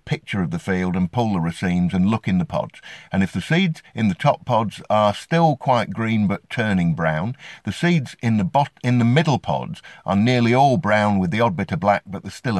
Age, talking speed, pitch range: 50-69, 240 wpm, 90-125 Hz